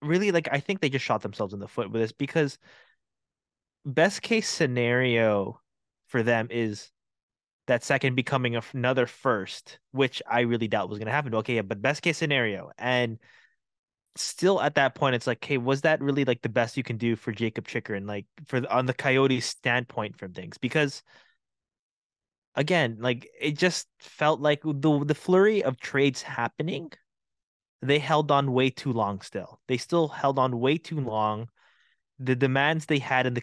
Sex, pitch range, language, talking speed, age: male, 115-150 Hz, English, 180 wpm, 20-39